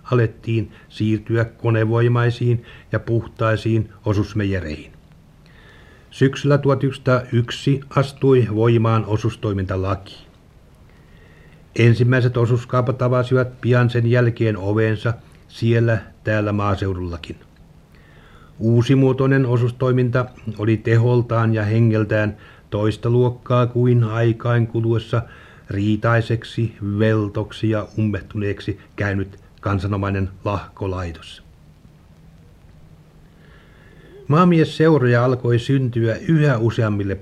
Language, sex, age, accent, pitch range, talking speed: Finnish, male, 60-79, native, 100-125 Hz, 70 wpm